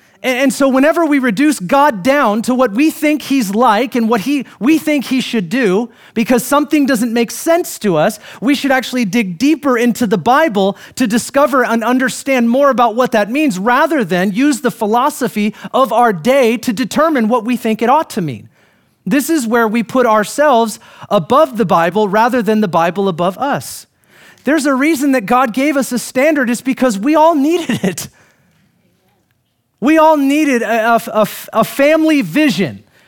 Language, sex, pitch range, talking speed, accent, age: English, male, 220-285 Hz, 180 wpm, American, 30-49